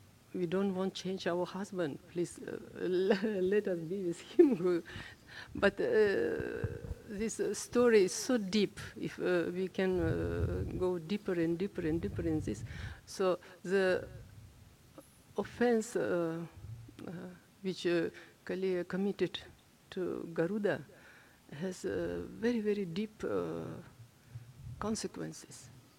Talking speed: 120 wpm